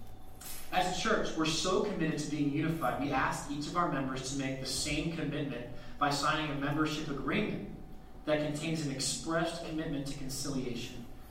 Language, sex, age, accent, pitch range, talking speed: English, male, 20-39, American, 130-160 Hz, 170 wpm